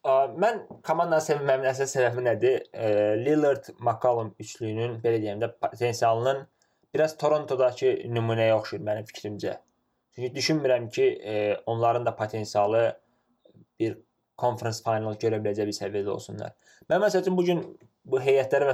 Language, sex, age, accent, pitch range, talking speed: English, male, 20-39, Turkish, 105-125 Hz, 130 wpm